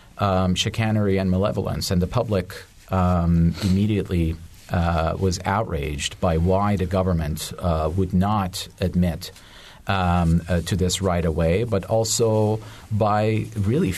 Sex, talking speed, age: male, 130 wpm, 40-59